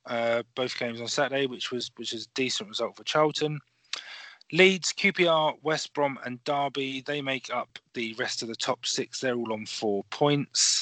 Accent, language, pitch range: British, English, 120-155 Hz